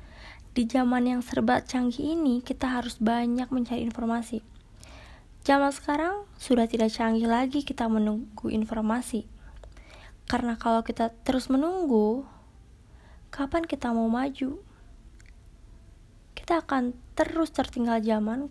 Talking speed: 110 wpm